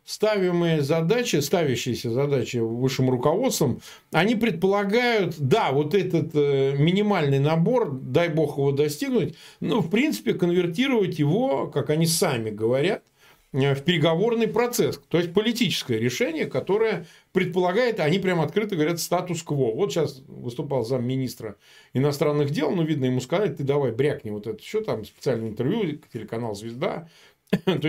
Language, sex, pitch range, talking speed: Russian, male, 140-195 Hz, 140 wpm